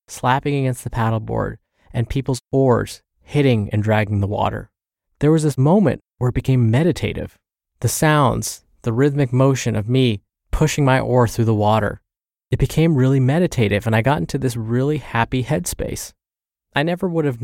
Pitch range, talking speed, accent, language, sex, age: 115-145 Hz, 170 wpm, American, English, male, 20-39